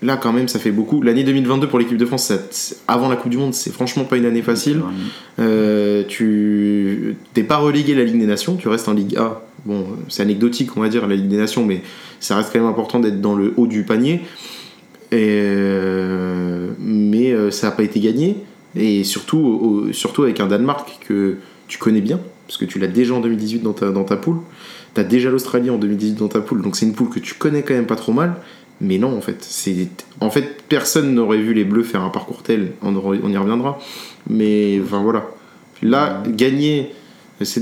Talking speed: 215 wpm